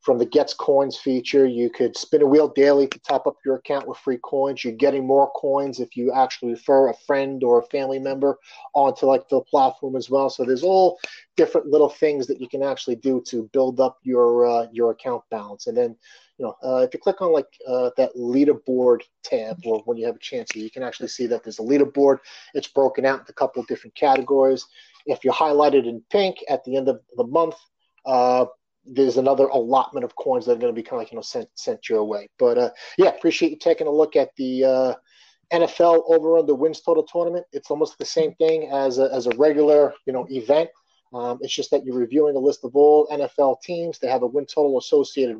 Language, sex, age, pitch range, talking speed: English, male, 30-49, 130-175 Hz, 235 wpm